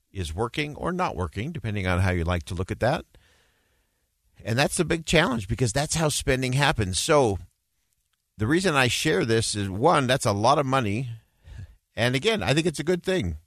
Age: 50-69